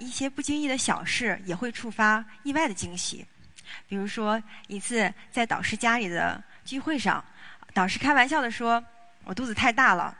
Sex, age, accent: female, 20-39, native